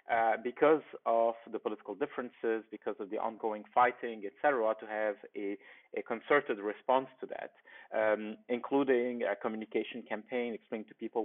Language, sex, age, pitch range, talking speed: English, male, 30-49, 105-125 Hz, 150 wpm